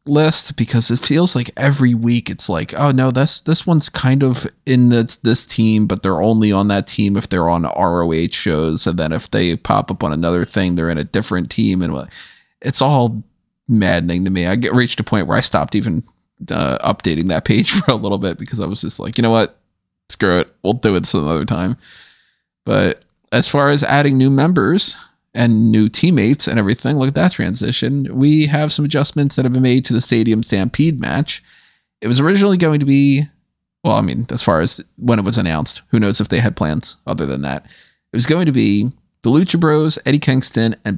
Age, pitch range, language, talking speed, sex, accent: 30-49, 100-145 Hz, English, 220 wpm, male, American